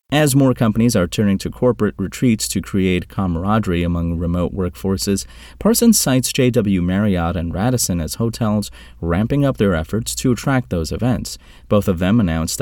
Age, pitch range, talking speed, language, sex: 30-49, 85-120 Hz, 160 wpm, English, male